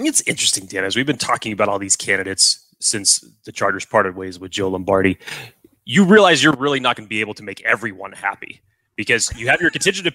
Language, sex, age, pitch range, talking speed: English, male, 30-49, 110-145 Hz, 225 wpm